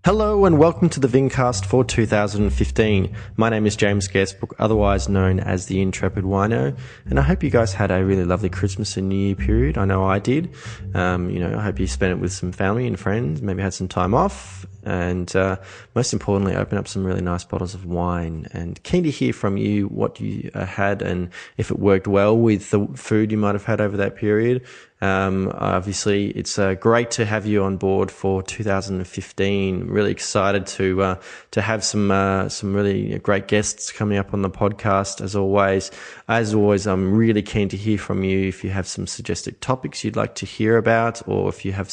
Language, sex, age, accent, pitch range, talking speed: English, male, 20-39, Australian, 95-110 Hz, 210 wpm